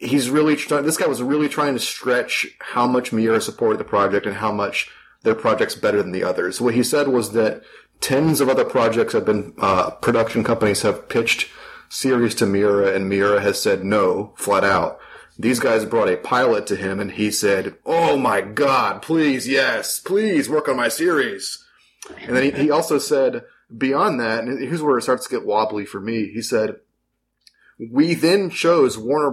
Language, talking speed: English, 195 wpm